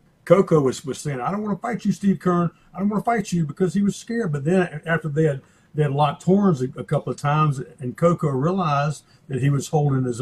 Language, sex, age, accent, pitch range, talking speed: English, male, 50-69, American, 130-170 Hz, 260 wpm